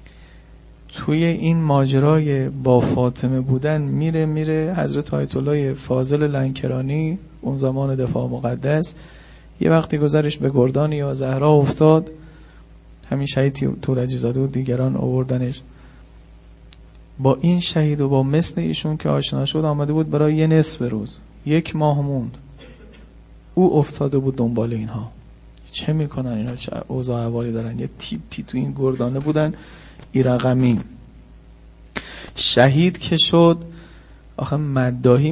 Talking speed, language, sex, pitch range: 120 wpm, Persian, male, 125-150 Hz